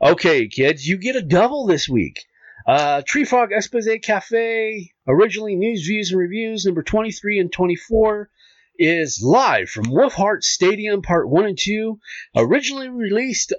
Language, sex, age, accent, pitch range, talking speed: English, male, 40-59, American, 130-215 Hz, 140 wpm